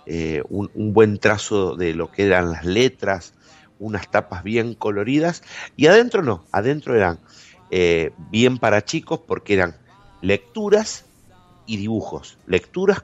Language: Spanish